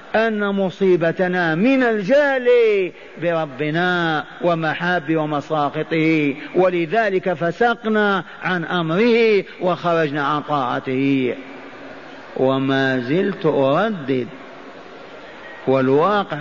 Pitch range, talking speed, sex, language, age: 175-220 Hz, 65 wpm, male, Arabic, 50-69